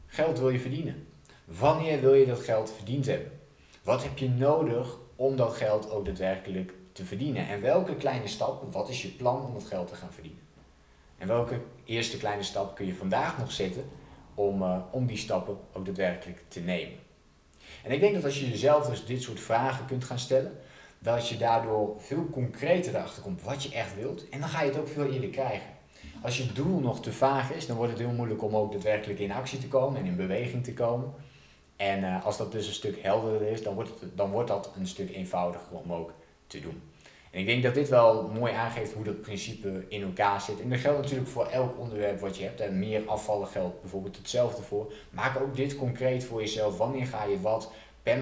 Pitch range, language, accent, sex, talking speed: 100-130 Hz, Dutch, Dutch, male, 215 wpm